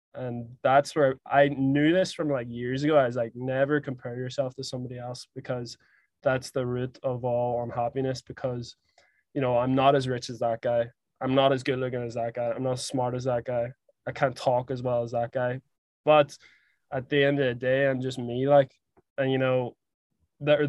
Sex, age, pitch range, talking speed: male, 20-39, 125-145 Hz, 215 wpm